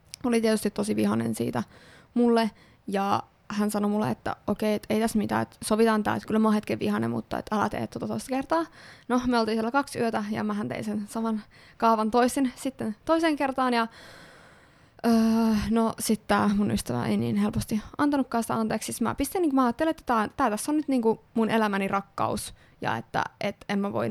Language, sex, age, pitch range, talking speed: Finnish, female, 20-39, 205-235 Hz, 200 wpm